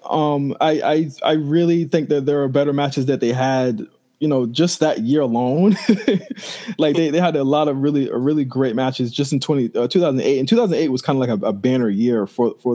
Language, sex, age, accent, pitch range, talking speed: English, male, 20-39, American, 120-150 Hz, 225 wpm